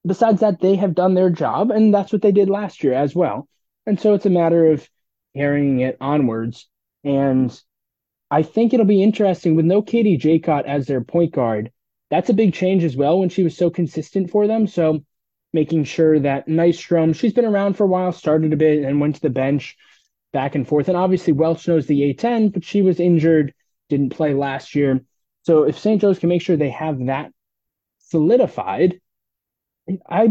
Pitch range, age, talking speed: 145-190 Hz, 20-39, 200 wpm